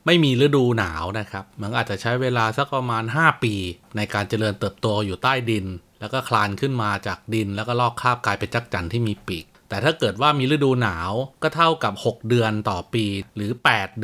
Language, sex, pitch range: Thai, male, 105-135 Hz